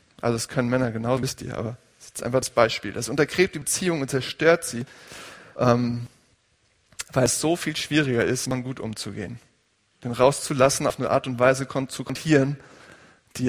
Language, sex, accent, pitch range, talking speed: German, male, German, 120-140 Hz, 180 wpm